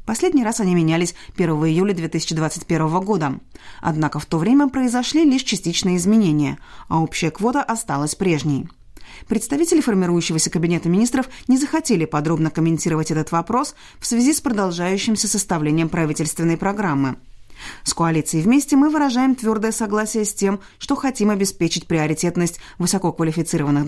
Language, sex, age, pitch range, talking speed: Russian, female, 30-49, 160-220 Hz, 130 wpm